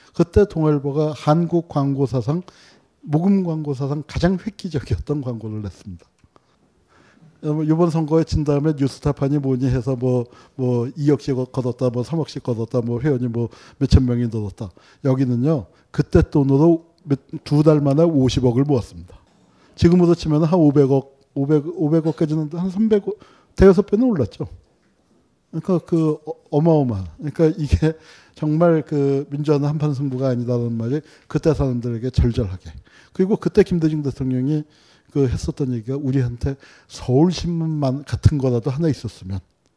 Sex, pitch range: male, 120-155 Hz